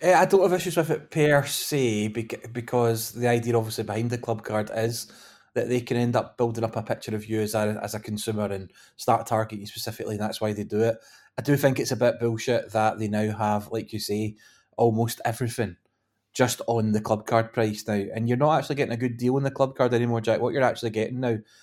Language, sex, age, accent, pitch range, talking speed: English, male, 20-39, British, 110-120 Hz, 240 wpm